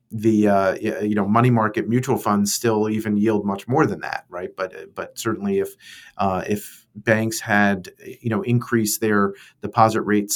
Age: 40-59